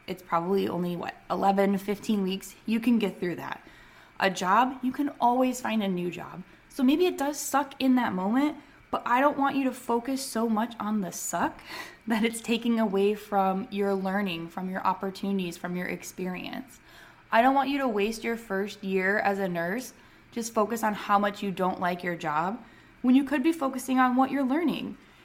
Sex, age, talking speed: female, 20-39, 200 wpm